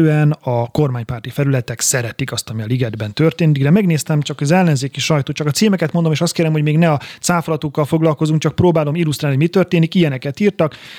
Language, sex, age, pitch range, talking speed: Hungarian, male, 30-49, 130-165 Hz, 195 wpm